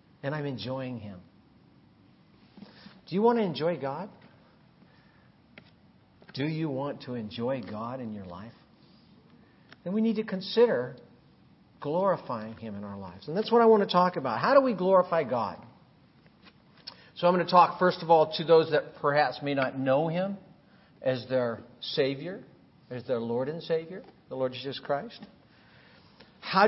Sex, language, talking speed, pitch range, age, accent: male, English, 160 wpm, 130-185 Hz, 50-69, American